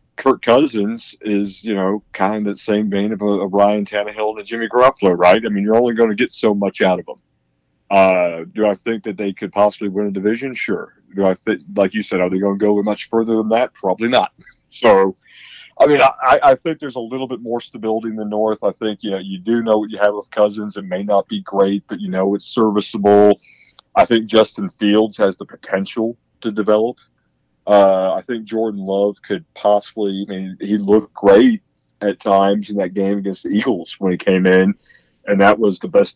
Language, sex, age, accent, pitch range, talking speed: English, male, 40-59, American, 95-110 Hz, 225 wpm